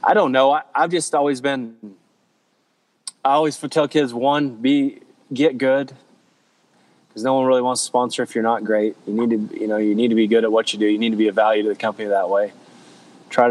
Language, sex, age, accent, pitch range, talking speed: English, male, 20-39, American, 105-120 Hz, 230 wpm